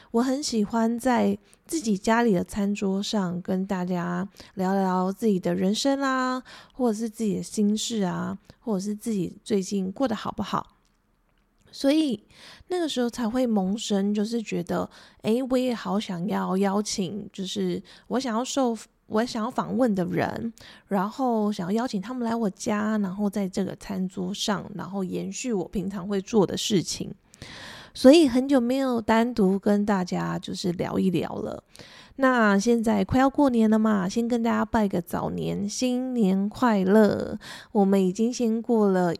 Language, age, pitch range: Chinese, 20-39, 195-235 Hz